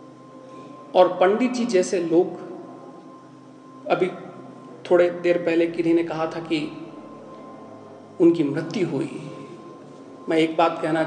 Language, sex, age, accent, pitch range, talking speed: Hindi, male, 40-59, native, 160-250 Hz, 110 wpm